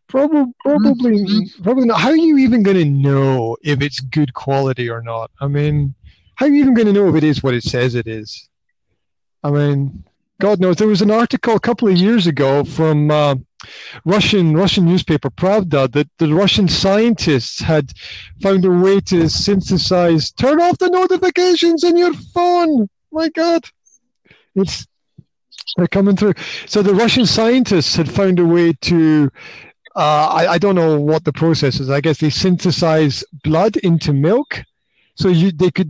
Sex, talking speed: male, 175 wpm